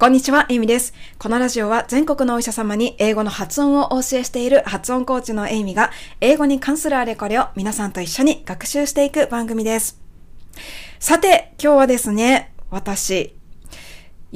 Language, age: Japanese, 20-39